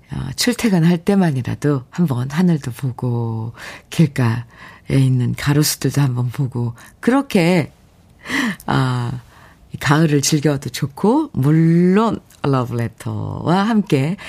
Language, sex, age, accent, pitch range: Korean, female, 50-69, native, 130-200 Hz